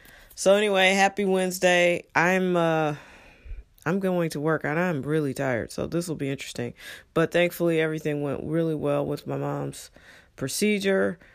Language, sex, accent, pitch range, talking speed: English, female, American, 150-175 Hz, 155 wpm